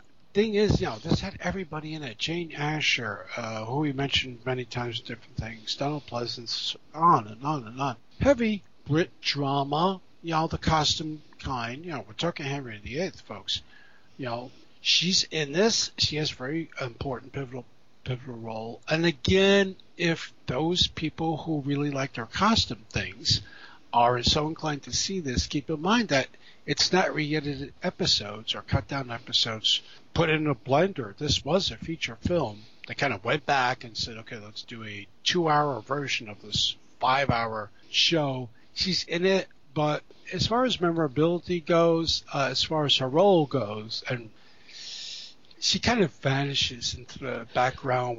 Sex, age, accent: male, 60-79, American